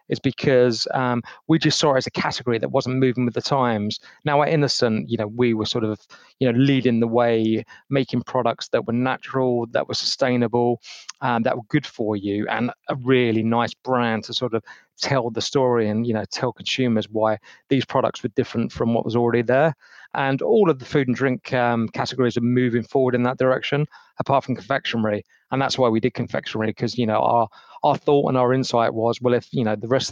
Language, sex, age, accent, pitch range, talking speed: English, male, 30-49, British, 115-135 Hz, 220 wpm